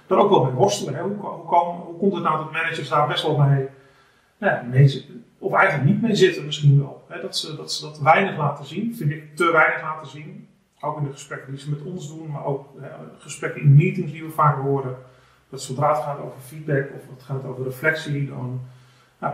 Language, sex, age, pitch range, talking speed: Dutch, male, 40-59, 135-160 Hz, 235 wpm